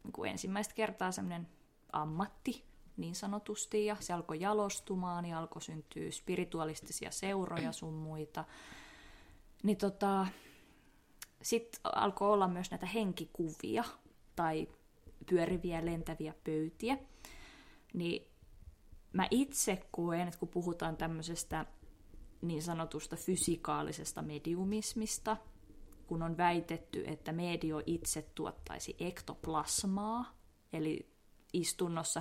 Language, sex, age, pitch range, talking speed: Finnish, female, 20-39, 155-200 Hz, 100 wpm